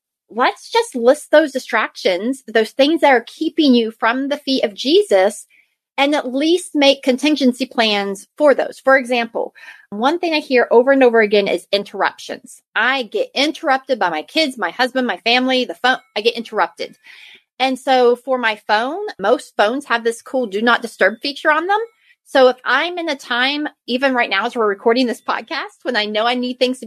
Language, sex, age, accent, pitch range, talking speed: English, female, 30-49, American, 215-275 Hz, 195 wpm